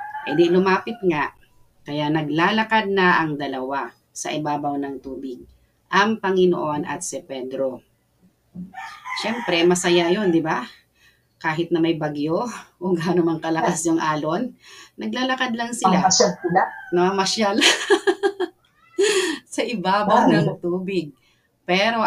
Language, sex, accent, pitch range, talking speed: Filipino, female, native, 155-200 Hz, 110 wpm